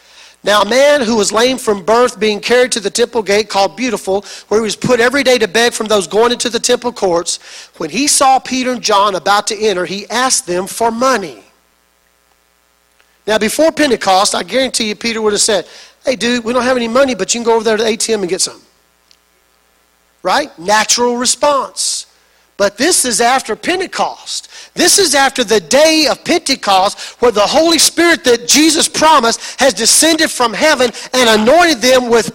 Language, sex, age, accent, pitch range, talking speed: English, male, 40-59, American, 200-280 Hz, 195 wpm